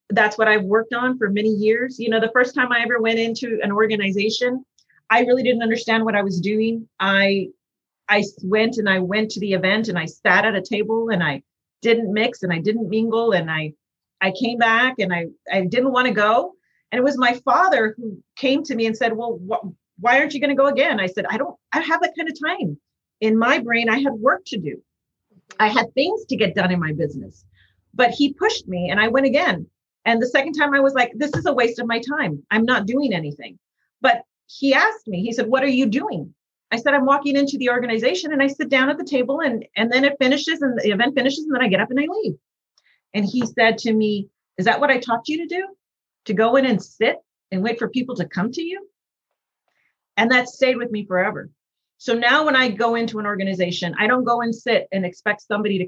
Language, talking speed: English, 240 wpm